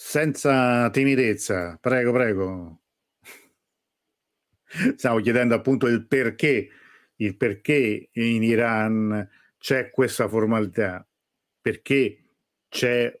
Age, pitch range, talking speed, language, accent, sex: 50-69, 105-130 Hz, 80 wpm, Italian, native, male